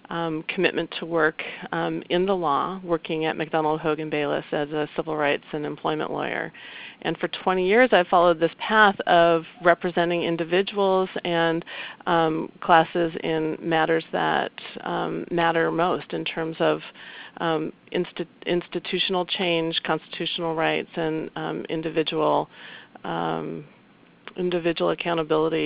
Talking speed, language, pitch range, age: 130 wpm, English, 155-175 Hz, 40-59